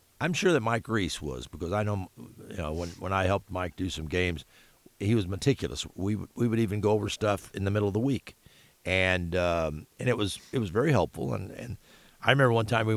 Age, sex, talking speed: 50-69, male, 235 wpm